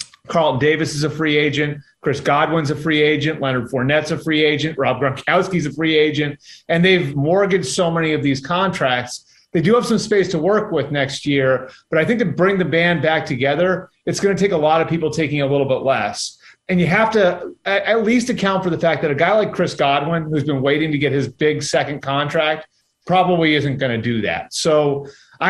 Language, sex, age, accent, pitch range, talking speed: English, male, 30-49, American, 140-175 Hz, 220 wpm